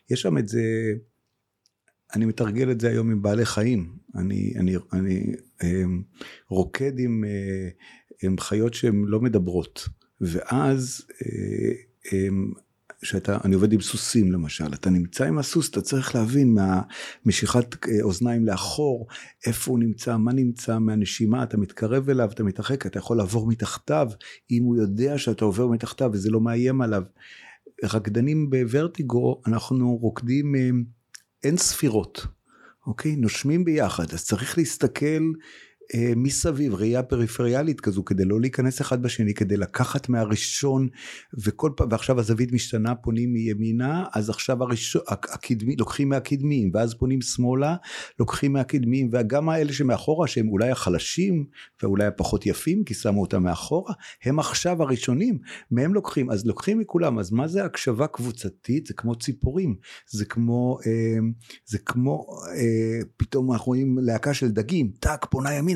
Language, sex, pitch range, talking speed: Hebrew, male, 105-130 Hz, 130 wpm